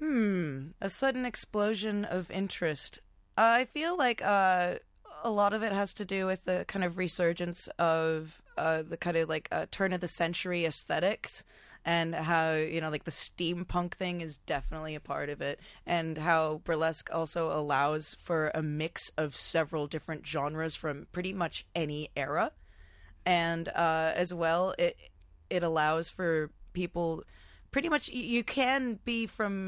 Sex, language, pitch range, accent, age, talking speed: female, English, 160-190 Hz, American, 20-39, 165 wpm